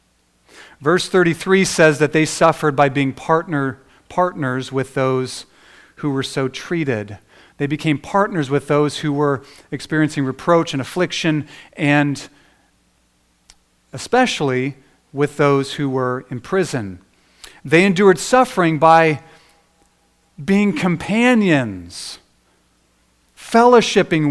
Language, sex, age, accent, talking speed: English, male, 40-59, American, 105 wpm